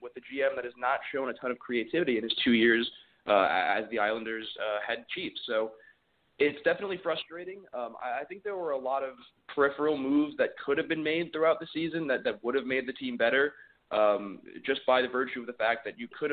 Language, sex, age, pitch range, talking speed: English, male, 20-39, 115-160 Hz, 235 wpm